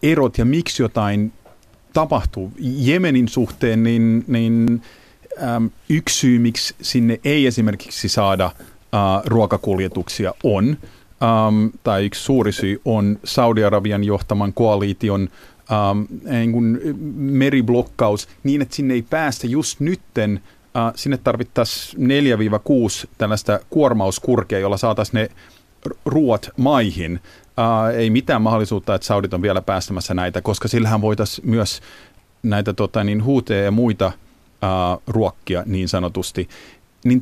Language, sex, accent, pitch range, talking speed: Finnish, male, native, 95-120 Hz, 115 wpm